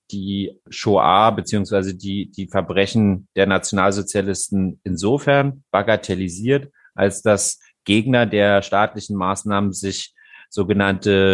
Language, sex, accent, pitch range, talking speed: German, male, German, 95-110 Hz, 95 wpm